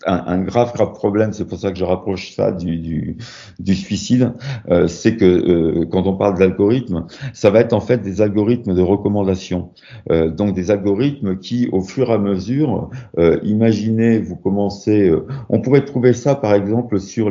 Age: 50-69